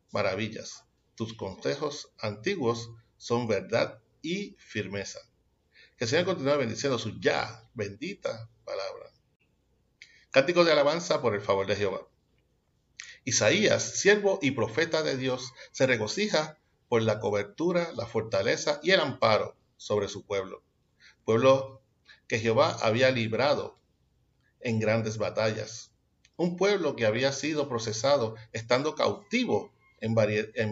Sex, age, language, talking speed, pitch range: male, 60-79, Spanish, 120 wpm, 110-145 Hz